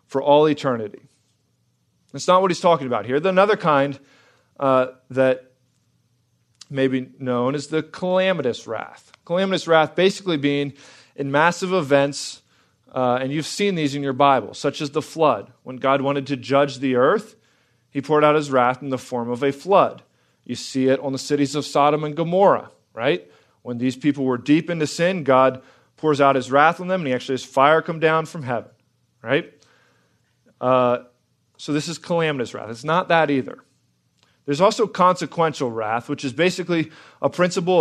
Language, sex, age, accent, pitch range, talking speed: English, male, 40-59, American, 130-160 Hz, 180 wpm